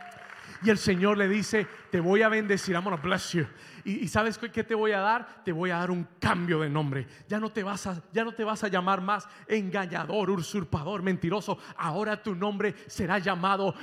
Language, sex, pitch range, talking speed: Spanish, male, 160-215 Hz, 215 wpm